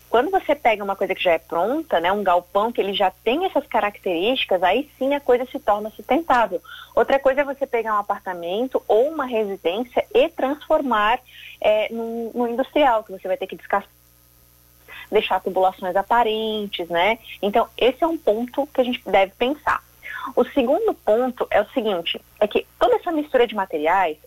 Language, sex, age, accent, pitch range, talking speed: Portuguese, female, 20-39, Brazilian, 190-250 Hz, 180 wpm